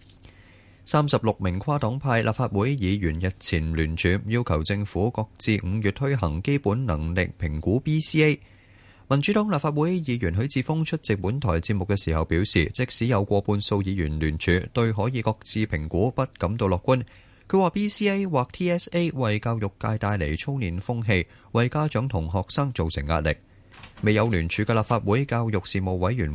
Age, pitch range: 20-39, 95-130 Hz